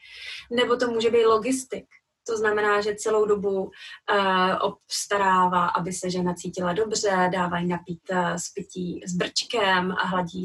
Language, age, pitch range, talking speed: Czech, 20-39, 195-225 Hz, 145 wpm